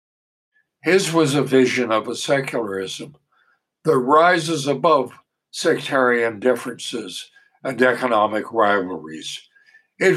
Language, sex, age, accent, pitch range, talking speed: English, male, 60-79, American, 120-160 Hz, 95 wpm